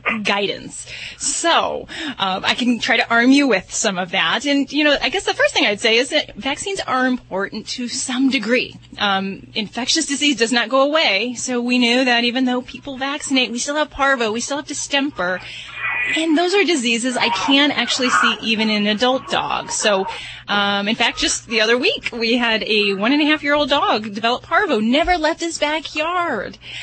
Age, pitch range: 20-39, 220-290 Hz